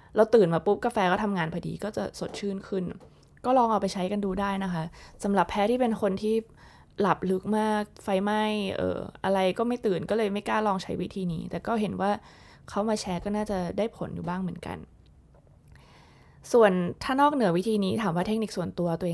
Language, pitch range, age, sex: Thai, 180-215 Hz, 20-39, female